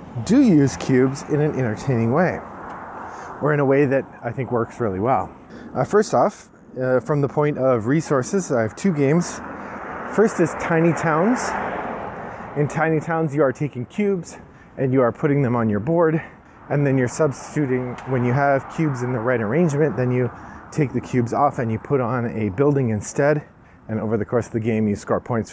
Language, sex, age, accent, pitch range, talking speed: English, male, 30-49, American, 115-140 Hz, 195 wpm